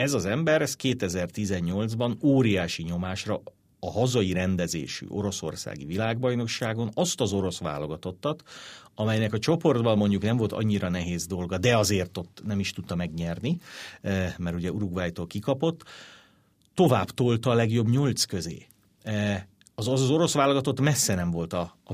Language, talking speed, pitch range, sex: Hungarian, 135 wpm, 90-120 Hz, male